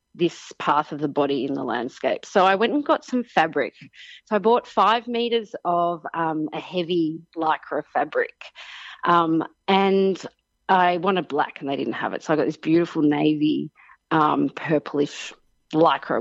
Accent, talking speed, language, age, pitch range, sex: Australian, 165 wpm, English, 30-49, 155-190 Hz, female